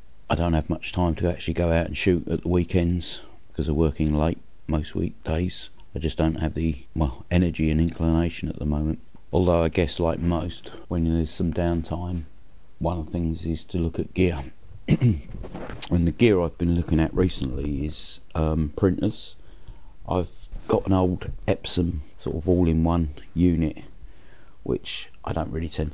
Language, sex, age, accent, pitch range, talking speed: English, male, 40-59, British, 80-90 Hz, 175 wpm